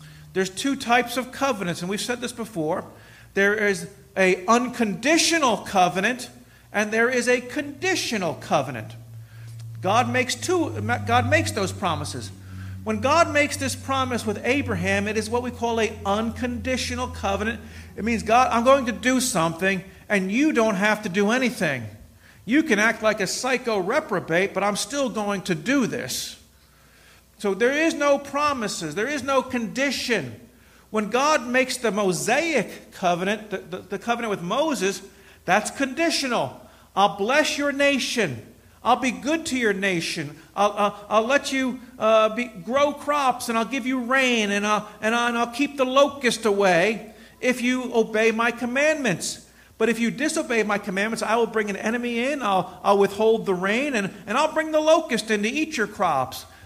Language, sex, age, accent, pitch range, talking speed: English, male, 50-69, American, 195-255 Hz, 170 wpm